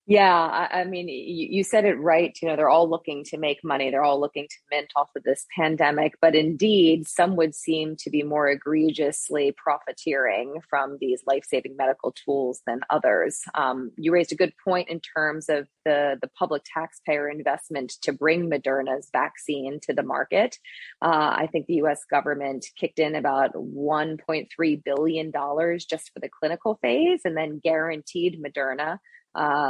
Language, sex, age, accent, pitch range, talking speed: English, female, 20-39, American, 145-175 Hz, 170 wpm